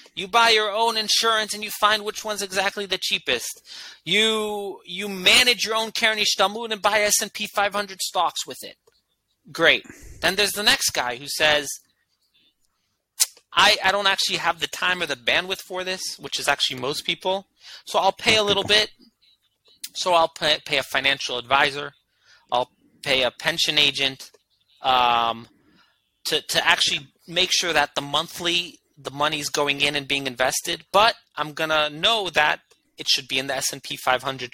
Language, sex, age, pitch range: English, male, 30-49, 145-200 Hz